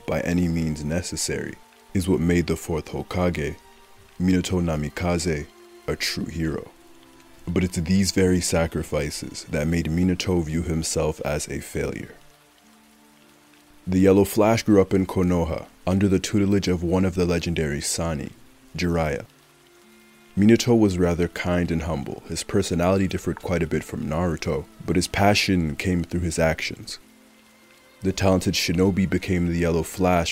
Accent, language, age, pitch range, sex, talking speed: American, English, 30-49, 80-95 Hz, male, 145 wpm